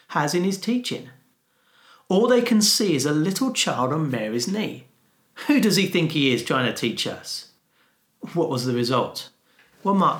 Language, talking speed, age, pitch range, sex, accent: English, 180 wpm, 40-59, 130-205 Hz, male, British